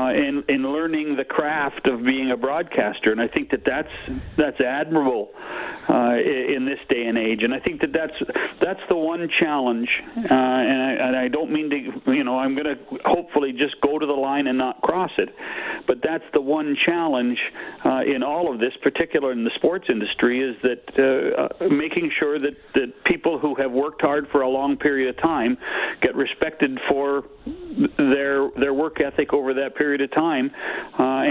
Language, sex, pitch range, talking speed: English, male, 135-160 Hz, 195 wpm